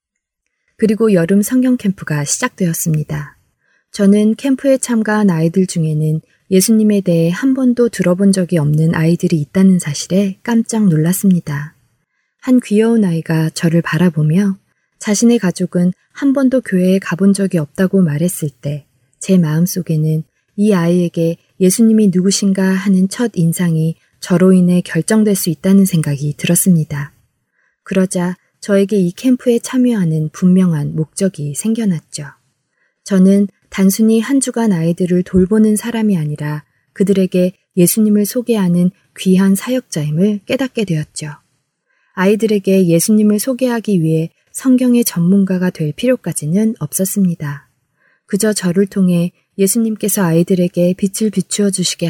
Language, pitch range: Korean, 165-210 Hz